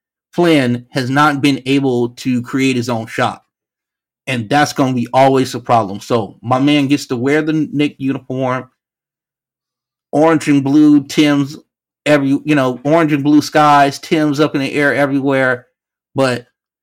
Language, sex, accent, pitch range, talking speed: English, male, American, 125-155 Hz, 160 wpm